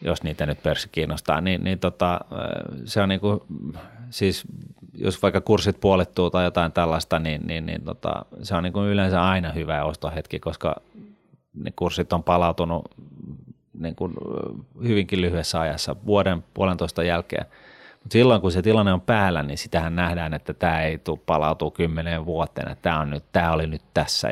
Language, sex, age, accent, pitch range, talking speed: Finnish, male, 30-49, native, 80-95 Hz, 170 wpm